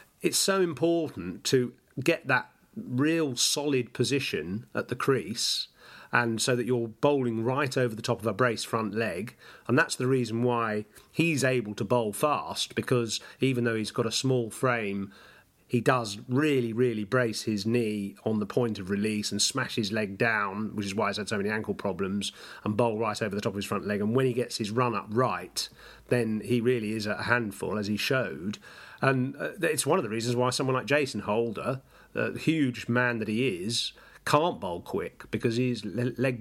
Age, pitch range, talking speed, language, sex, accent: 40-59, 110-135 Hz, 205 wpm, English, male, British